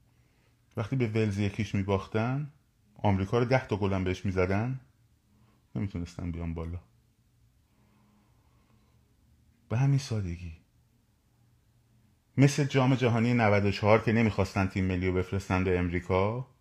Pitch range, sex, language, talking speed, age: 90-115 Hz, male, Persian, 105 wpm, 30-49